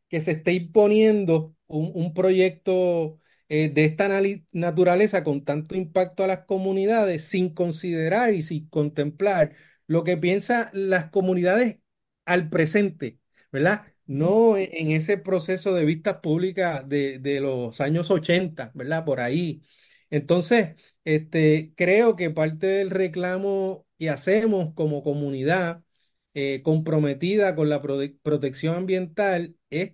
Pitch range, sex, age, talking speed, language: 155-195 Hz, male, 30-49, 125 wpm, Spanish